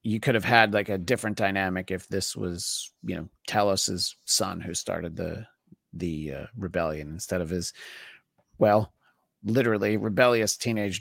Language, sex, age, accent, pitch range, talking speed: English, male, 30-49, American, 95-120 Hz, 155 wpm